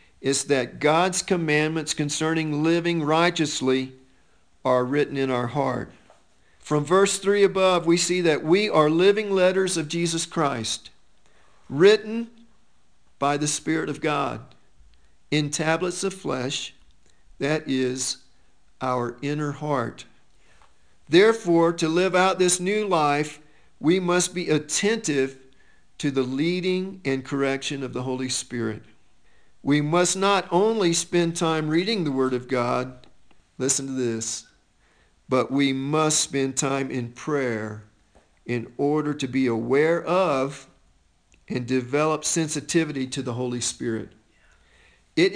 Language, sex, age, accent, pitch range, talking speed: English, male, 50-69, American, 130-175 Hz, 125 wpm